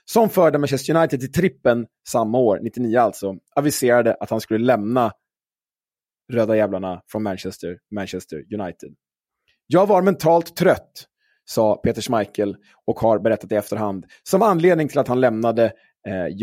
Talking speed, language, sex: 145 wpm, Swedish, male